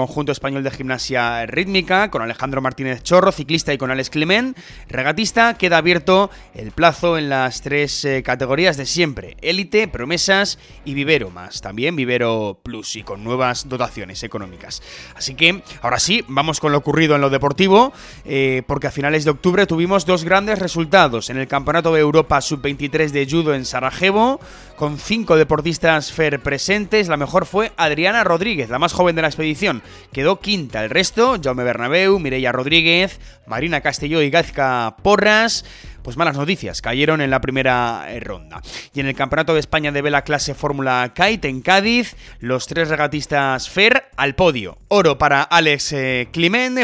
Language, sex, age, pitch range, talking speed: Spanish, male, 20-39, 130-170 Hz, 170 wpm